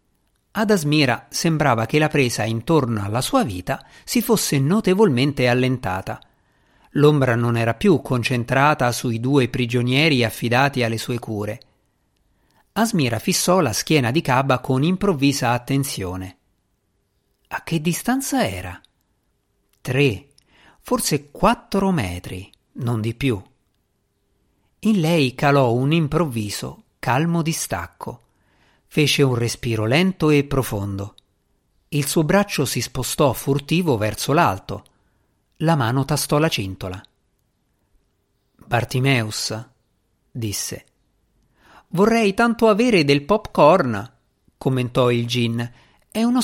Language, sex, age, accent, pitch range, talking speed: Italian, male, 50-69, native, 115-170 Hz, 110 wpm